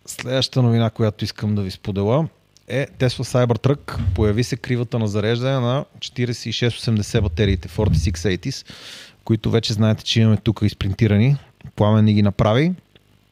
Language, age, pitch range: Bulgarian, 30-49, 105-130 Hz